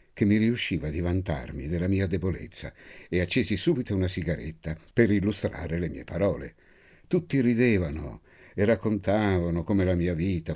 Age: 60-79